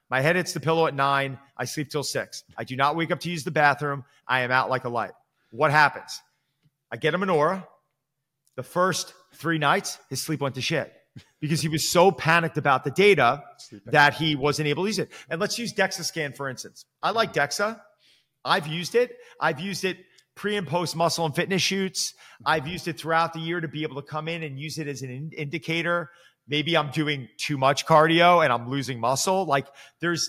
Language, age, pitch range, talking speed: English, 40-59, 140-180 Hz, 215 wpm